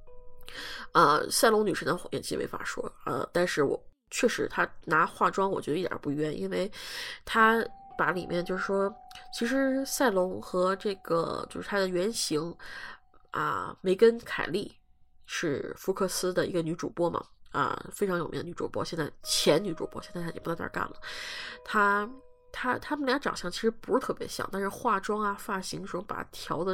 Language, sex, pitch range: Chinese, female, 180-235 Hz